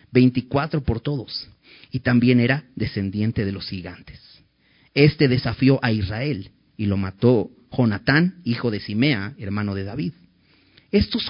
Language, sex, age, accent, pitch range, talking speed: Spanish, male, 40-59, Mexican, 110-140 Hz, 135 wpm